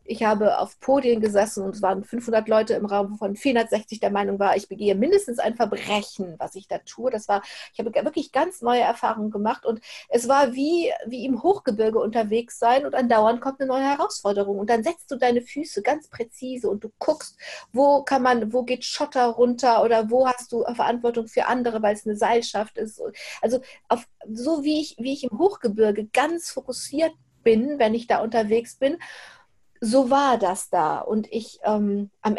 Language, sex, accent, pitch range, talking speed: German, female, German, 210-255 Hz, 185 wpm